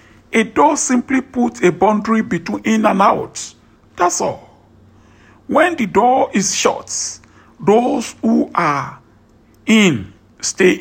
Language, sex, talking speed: English, male, 120 wpm